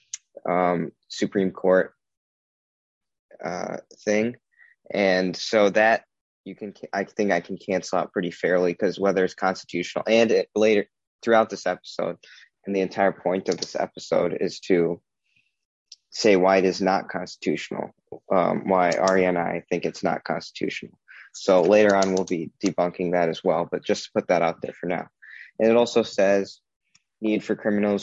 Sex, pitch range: male, 90-110 Hz